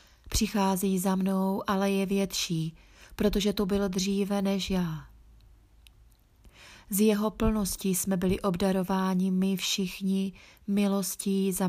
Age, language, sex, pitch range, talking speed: 30-49, Czech, female, 160-205 Hz, 115 wpm